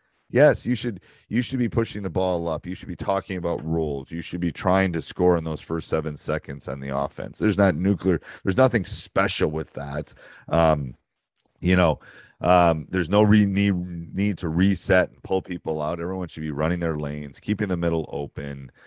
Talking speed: 200 wpm